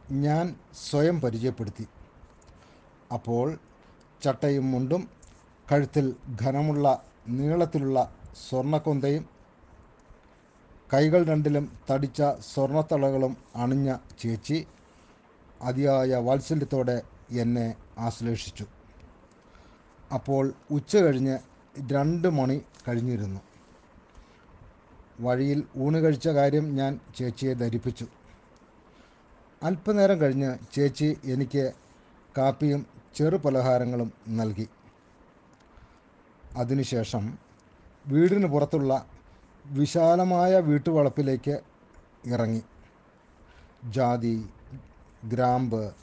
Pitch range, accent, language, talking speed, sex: 115-145 Hz, native, Malayalam, 65 wpm, male